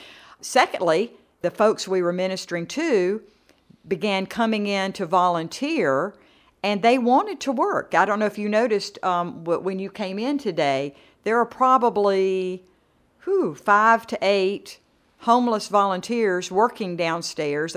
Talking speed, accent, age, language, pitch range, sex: 130 wpm, American, 50-69, English, 170-200 Hz, female